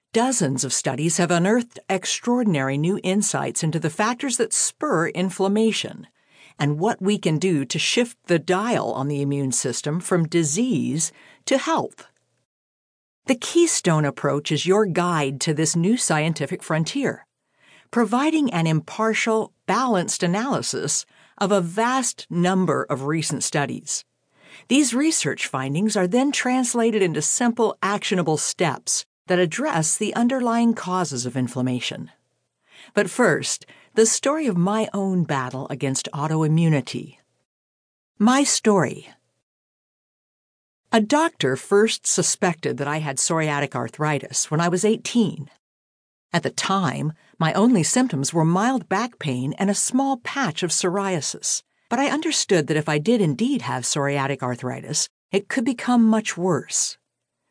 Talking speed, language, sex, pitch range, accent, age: 135 wpm, English, female, 155-230 Hz, American, 50-69